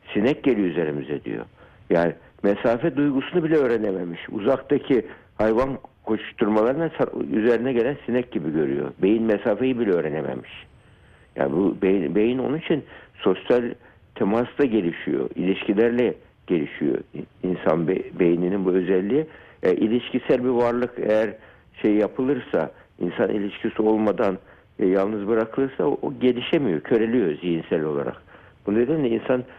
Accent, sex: native, male